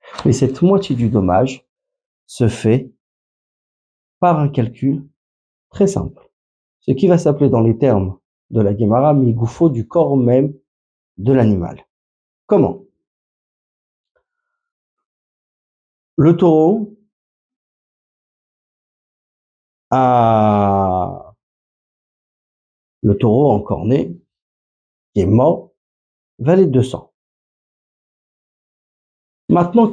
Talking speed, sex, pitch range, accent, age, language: 85 wpm, male, 95-145 Hz, French, 50-69, French